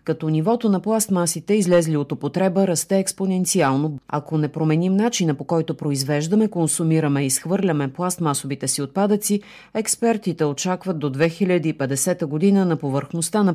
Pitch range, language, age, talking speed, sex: 155-205 Hz, Bulgarian, 40-59, 135 wpm, female